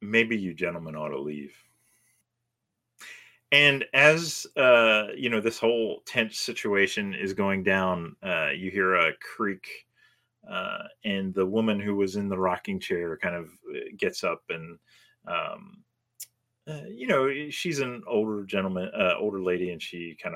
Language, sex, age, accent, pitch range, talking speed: English, male, 30-49, American, 95-150 Hz, 155 wpm